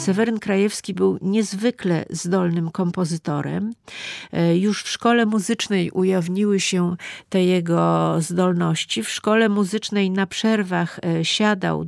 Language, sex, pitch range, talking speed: Polish, female, 175-210 Hz, 105 wpm